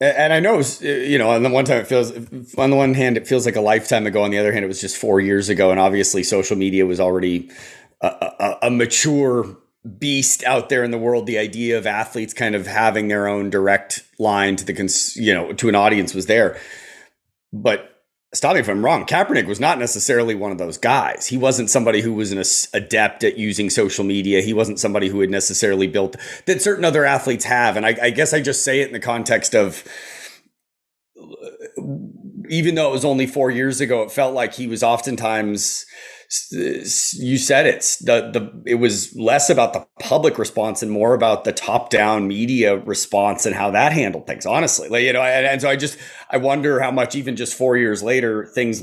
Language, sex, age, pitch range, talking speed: English, male, 30-49, 100-130 Hz, 215 wpm